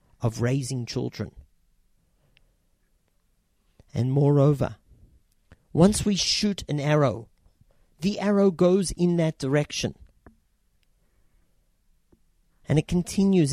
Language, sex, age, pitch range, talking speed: English, male, 40-59, 95-140 Hz, 85 wpm